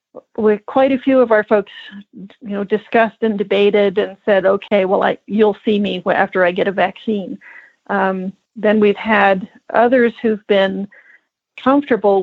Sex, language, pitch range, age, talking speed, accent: female, English, 195-230 Hz, 40-59, 160 wpm, American